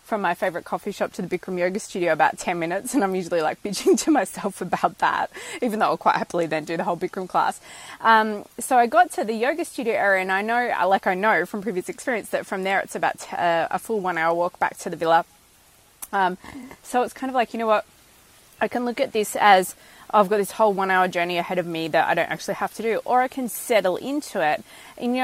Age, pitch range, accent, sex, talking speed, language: 20-39, 190-245 Hz, Australian, female, 250 wpm, English